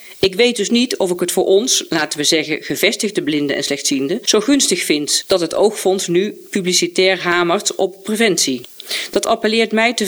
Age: 40-59